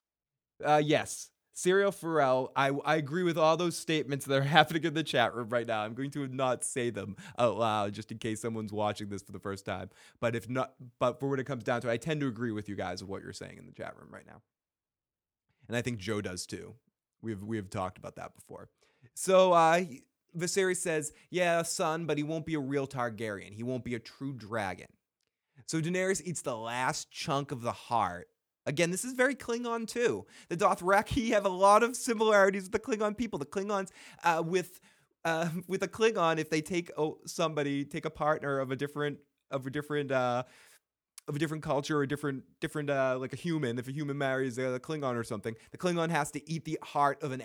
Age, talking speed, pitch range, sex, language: 20-39, 225 wpm, 120-165 Hz, male, English